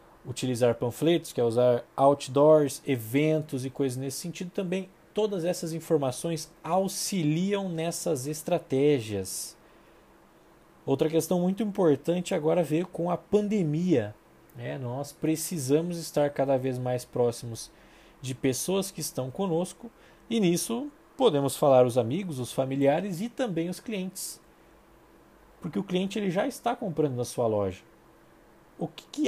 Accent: Brazilian